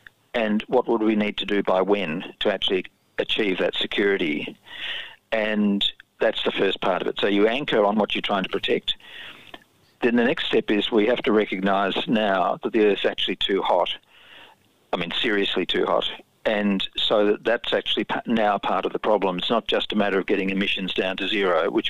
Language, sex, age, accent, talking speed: English, male, 50-69, Australian, 205 wpm